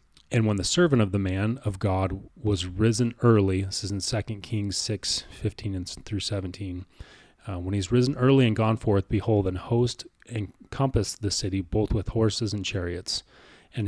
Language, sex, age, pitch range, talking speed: English, male, 30-49, 95-115 Hz, 180 wpm